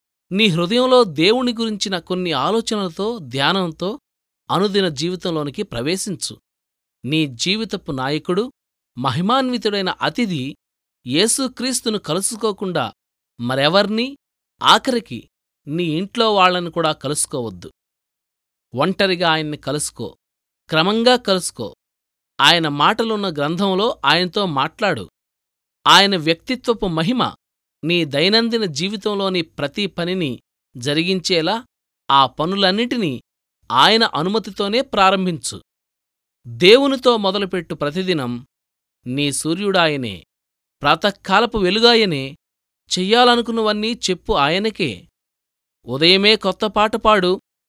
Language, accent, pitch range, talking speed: Telugu, native, 145-215 Hz, 75 wpm